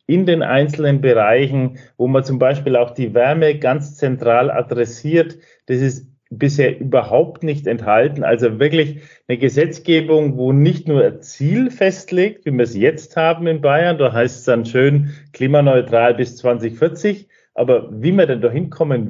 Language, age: German, 40-59